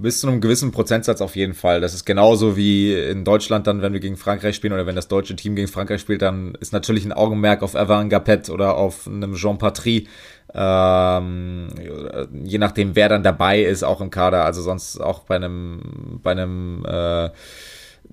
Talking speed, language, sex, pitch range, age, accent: 190 wpm, German, male, 95-110 Hz, 20-39, German